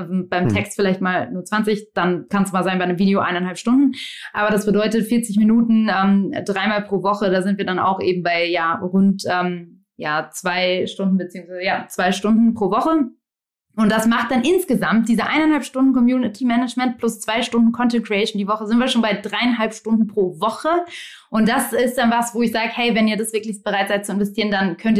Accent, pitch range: German, 190-230 Hz